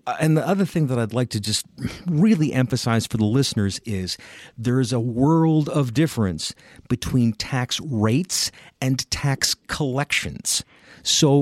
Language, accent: English, American